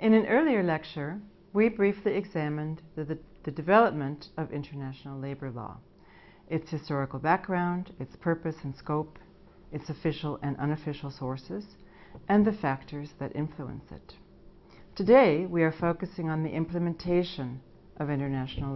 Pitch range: 145-190 Hz